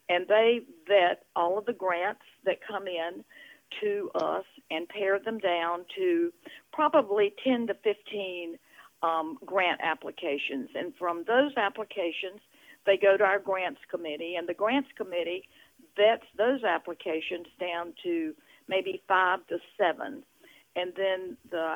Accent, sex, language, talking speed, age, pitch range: American, female, English, 140 wpm, 50-69, 175-245 Hz